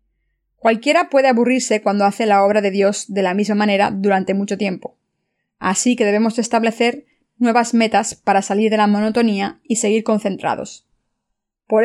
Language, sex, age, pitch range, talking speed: Spanish, female, 20-39, 205-235 Hz, 155 wpm